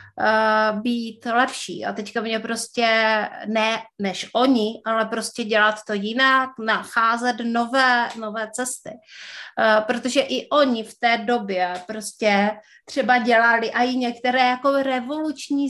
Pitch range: 210-240 Hz